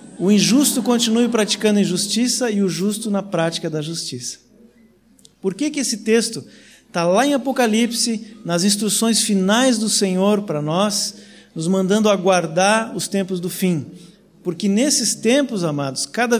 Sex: male